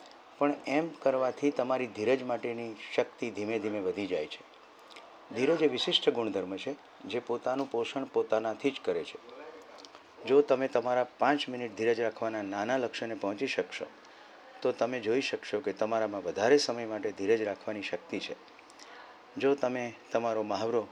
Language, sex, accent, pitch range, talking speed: Gujarati, male, native, 110-135 Hz, 115 wpm